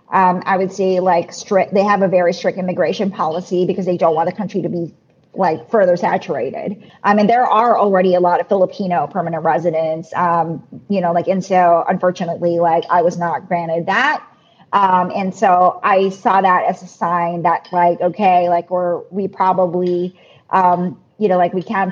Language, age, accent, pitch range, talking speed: English, 40-59, American, 180-225 Hz, 190 wpm